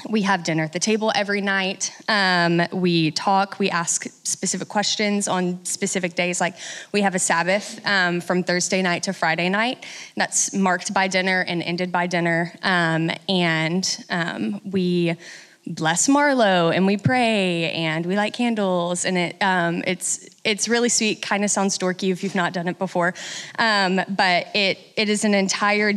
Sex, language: female, English